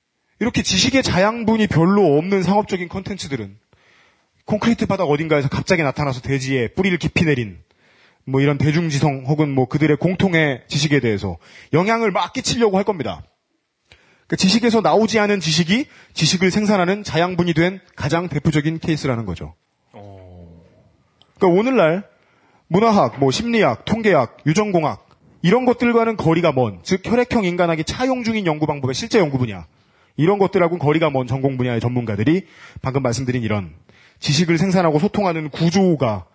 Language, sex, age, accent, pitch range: Korean, male, 30-49, native, 135-195 Hz